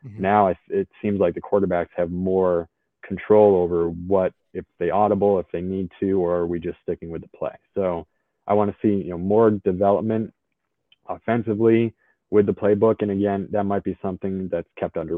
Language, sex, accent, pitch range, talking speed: English, male, American, 95-105 Hz, 190 wpm